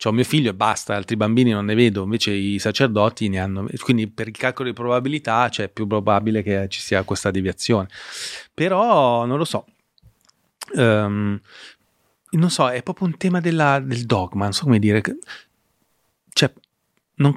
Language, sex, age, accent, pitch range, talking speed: Italian, male, 30-49, native, 100-130 Hz, 175 wpm